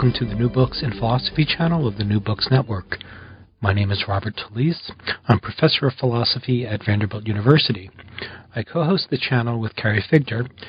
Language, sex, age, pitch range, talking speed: English, male, 40-59, 105-130 Hz, 180 wpm